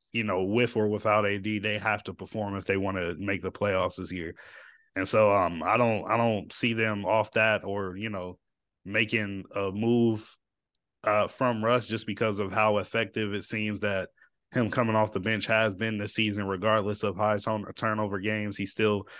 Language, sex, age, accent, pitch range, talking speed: English, male, 20-39, American, 100-115 Hz, 200 wpm